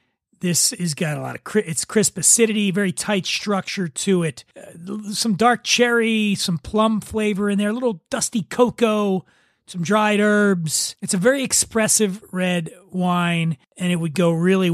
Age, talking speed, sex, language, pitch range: 30-49, 165 wpm, male, English, 170-205 Hz